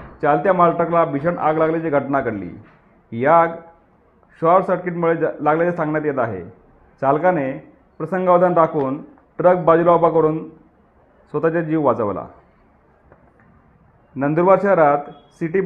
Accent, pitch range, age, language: native, 145-180 Hz, 40-59, Marathi